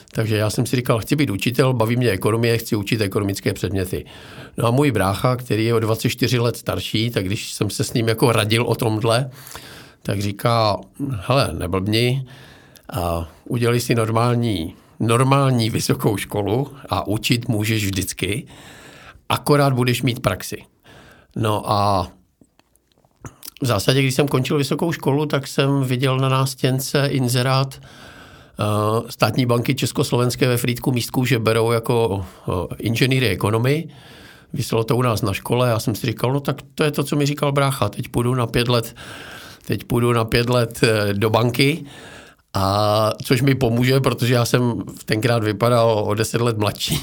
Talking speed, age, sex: 160 wpm, 50-69, male